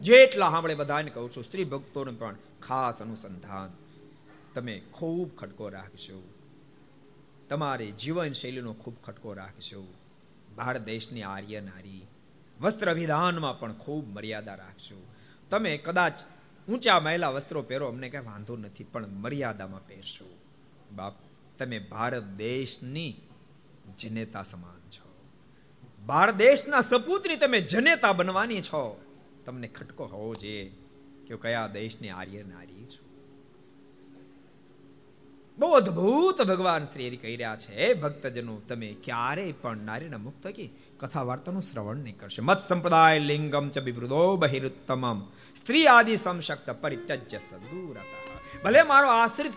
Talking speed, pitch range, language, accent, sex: 70 wpm, 110-175 Hz, Gujarati, native, male